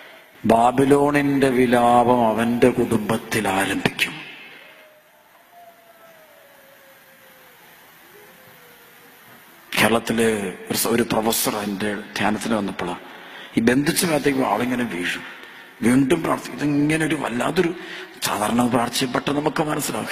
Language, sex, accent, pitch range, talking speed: Malayalam, male, native, 120-160 Hz, 70 wpm